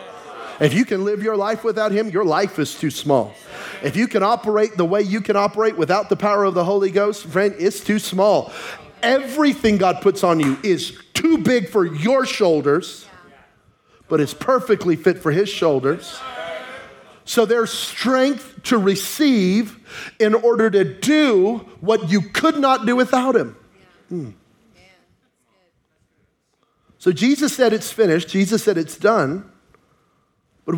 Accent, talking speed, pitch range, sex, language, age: American, 150 wpm, 145-215 Hz, male, English, 40-59